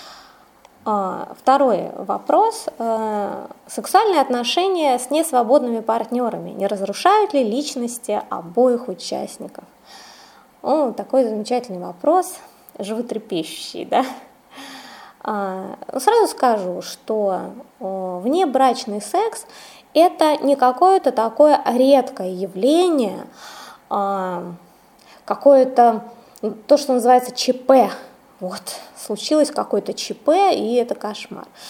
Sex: female